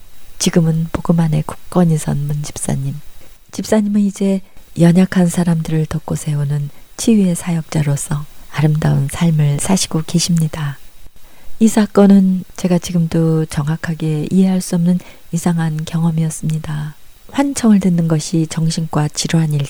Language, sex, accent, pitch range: Korean, female, native, 150-180 Hz